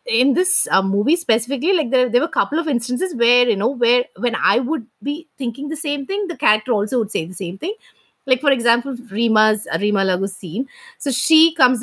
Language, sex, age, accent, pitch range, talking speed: English, female, 20-39, Indian, 175-245 Hz, 225 wpm